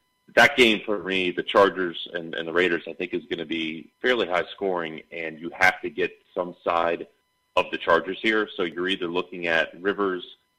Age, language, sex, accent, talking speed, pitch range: 30-49, English, male, American, 205 wpm, 85-110 Hz